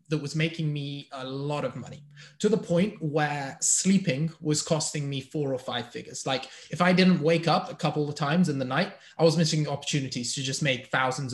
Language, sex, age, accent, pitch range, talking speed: English, male, 20-39, British, 140-170 Hz, 215 wpm